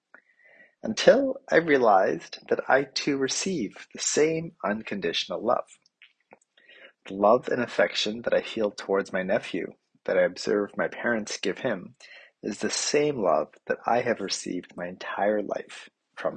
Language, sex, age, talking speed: English, male, 30-49, 145 wpm